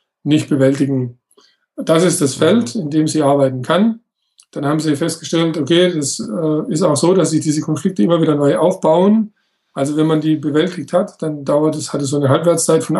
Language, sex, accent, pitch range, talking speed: German, male, German, 150-185 Hz, 200 wpm